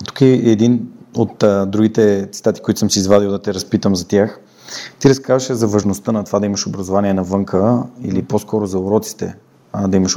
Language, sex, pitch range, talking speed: Bulgarian, male, 95-110 Hz, 195 wpm